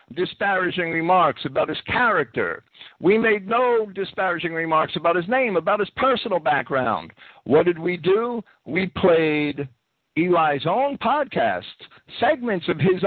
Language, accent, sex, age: English, American, male, 50-69